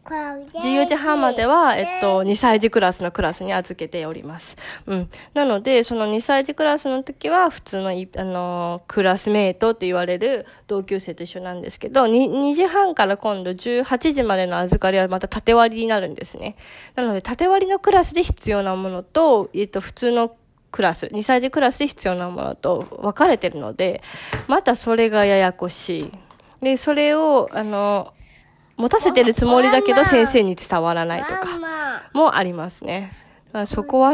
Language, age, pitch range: Japanese, 20-39, 185-285 Hz